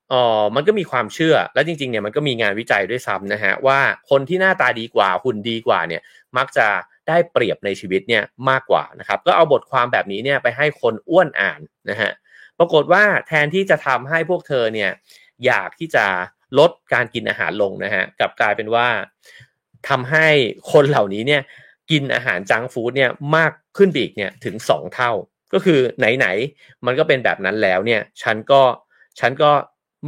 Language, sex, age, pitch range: English, male, 30-49, 115-160 Hz